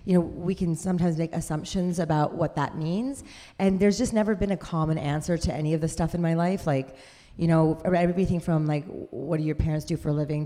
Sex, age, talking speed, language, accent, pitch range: female, 30-49, 235 wpm, English, American, 155-180 Hz